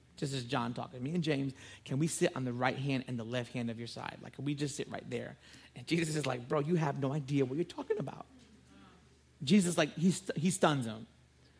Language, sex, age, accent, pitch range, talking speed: English, male, 40-59, American, 140-225 Hz, 250 wpm